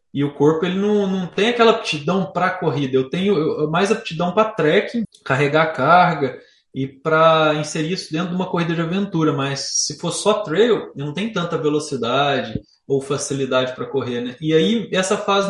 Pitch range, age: 155-210 Hz, 20-39